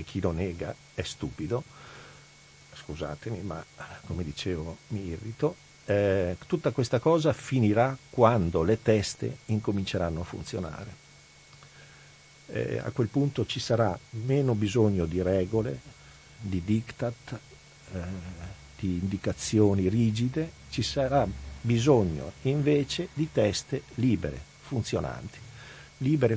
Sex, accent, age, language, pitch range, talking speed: male, native, 50-69, Italian, 90-120 Hz, 105 wpm